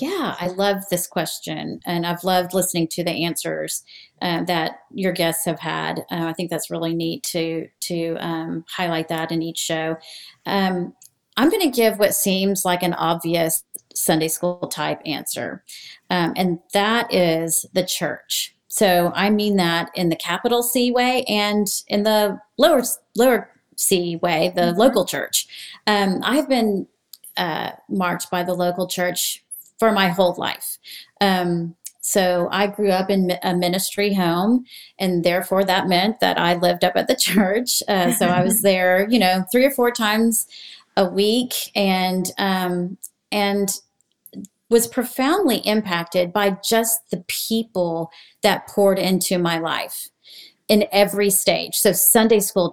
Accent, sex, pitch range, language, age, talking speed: American, female, 175-210 Hz, English, 30-49, 155 wpm